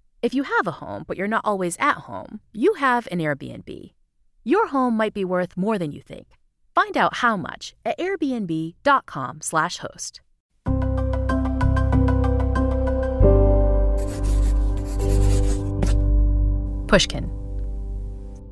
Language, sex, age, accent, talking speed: English, female, 30-49, American, 105 wpm